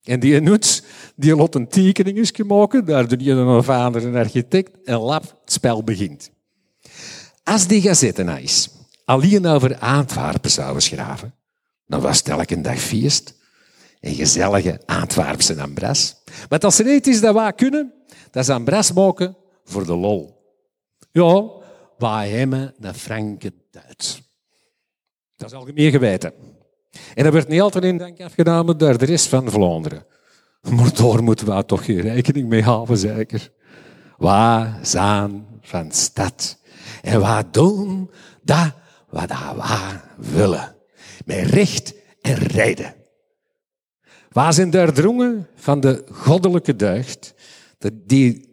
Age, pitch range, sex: 50-69, 115-180 Hz, male